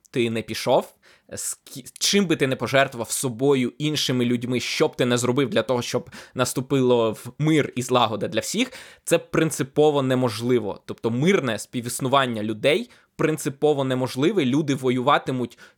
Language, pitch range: Ukrainian, 125-160 Hz